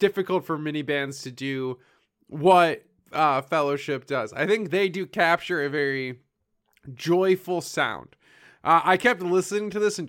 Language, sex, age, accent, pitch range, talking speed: English, male, 20-39, American, 150-195 Hz, 155 wpm